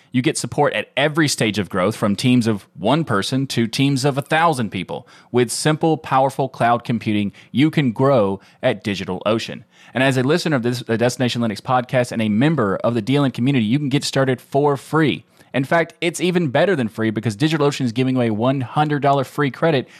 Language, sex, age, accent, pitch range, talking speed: English, male, 30-49, American, 115-145 Hz, 200 wpm